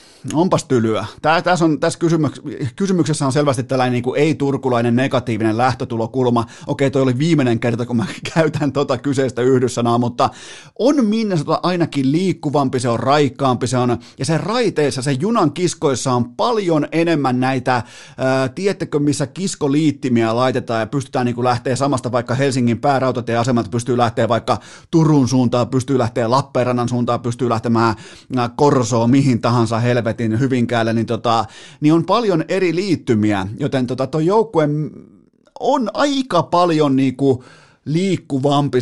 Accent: native